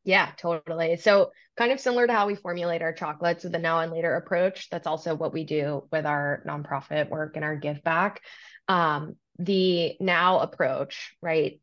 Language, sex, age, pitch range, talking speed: English, female, 20-39, 155-170 Hz, 185 wpm